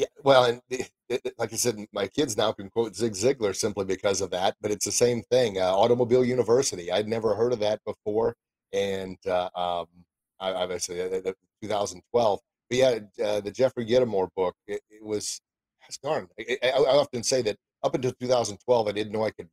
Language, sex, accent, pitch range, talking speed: English, male, American, 100-125 Hz, 205 wpm